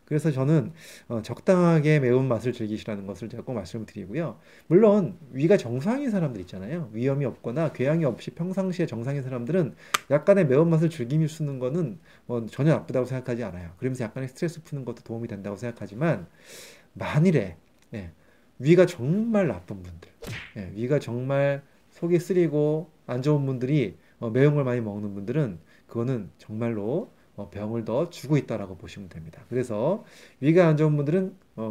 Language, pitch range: Korean, 110-155 Hz